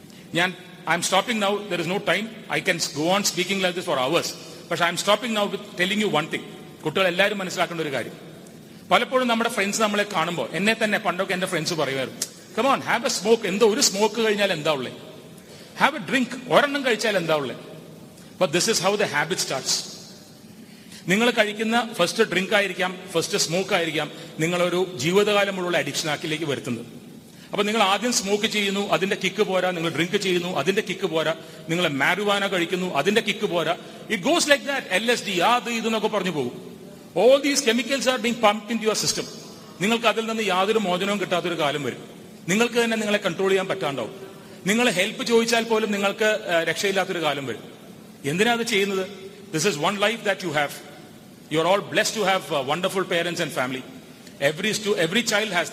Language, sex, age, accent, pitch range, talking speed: Malayalam, male, 40-59, native, 175-215 Hz, 180 wpm